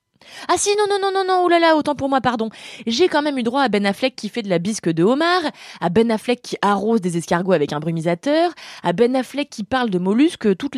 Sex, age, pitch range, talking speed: female, 20-39, 190-275 Hz, 260 wpm